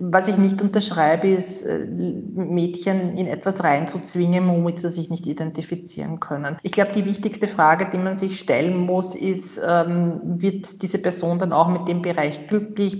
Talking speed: 165 wpm